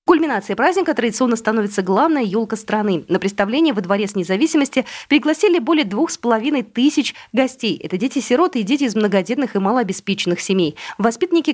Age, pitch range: 30-49, 195-295 Hz